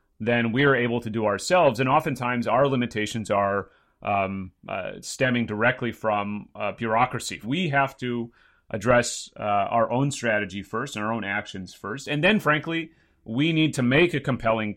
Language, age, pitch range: English, 30-49, 105-135 Hz